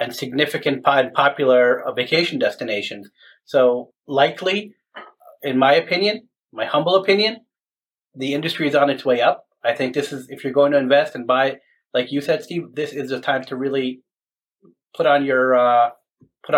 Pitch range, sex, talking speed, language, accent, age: 130-155 Hz, male, 170 wpm, English, American, 30-49